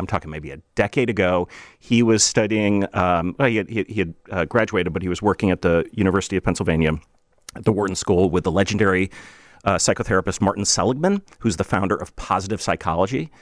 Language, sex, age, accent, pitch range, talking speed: English, male, 40-59, American, 95-115 Hz, 190 wpm